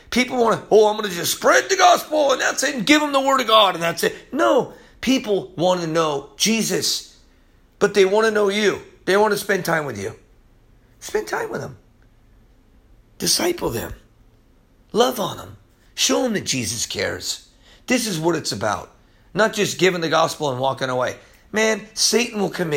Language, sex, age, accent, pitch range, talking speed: English, male, 40-59, American, 160-220 Hz, 195 wpm